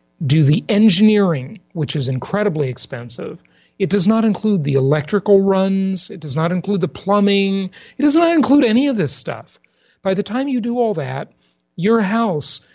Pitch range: 155-230 Hz